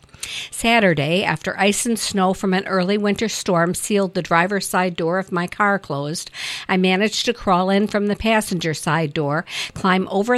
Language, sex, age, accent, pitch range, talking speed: English, female, 50-69, American, 165-200 Hz, 180 wpm